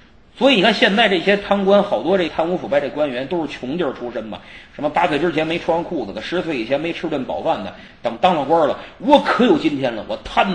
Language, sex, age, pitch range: Chinese, male, 30-49, 145-230 Hz